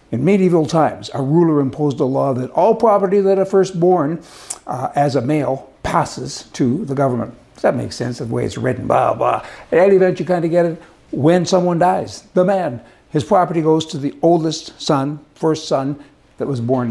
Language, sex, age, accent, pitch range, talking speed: English, male, 60-79, American, 145-185 Hz, 200 wpm